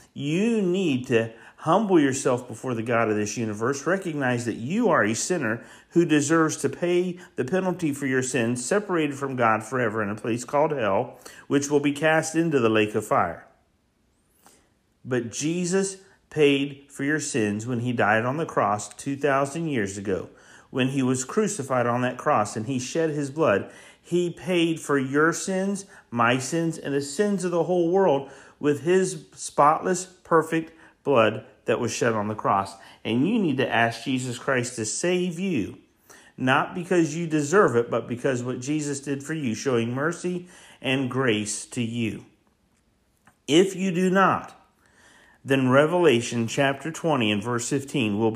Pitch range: 115-165 Hz